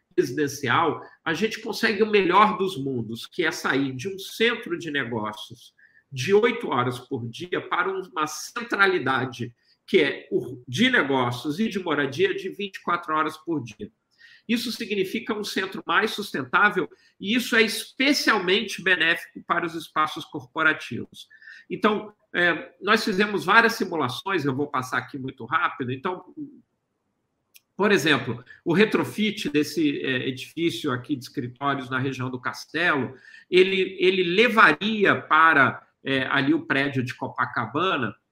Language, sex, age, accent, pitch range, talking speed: Portuguese, male, 50-69, Brazilian, 135-215 Hz, 135 wpm